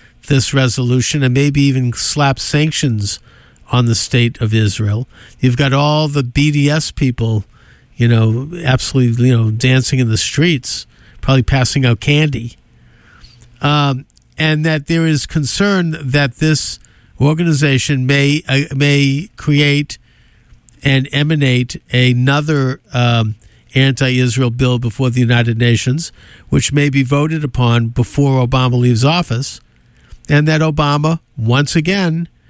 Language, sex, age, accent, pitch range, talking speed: English, male, 50-69, American, 120-145 Hz, 125 wpm